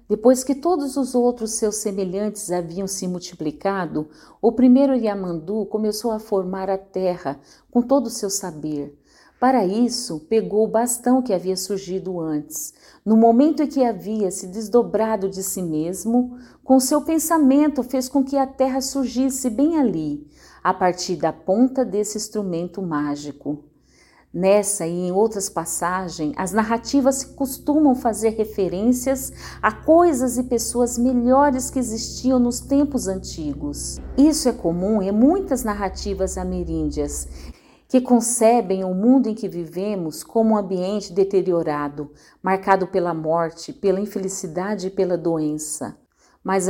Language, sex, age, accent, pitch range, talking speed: Portuguese, female, 50-69, Brazilian, 180-245 Hz, 135 wpm